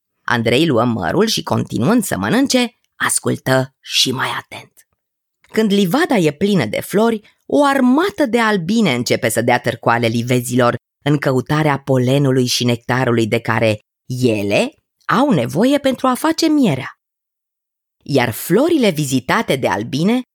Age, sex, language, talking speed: 20-39, female, Romanian, 135 wpm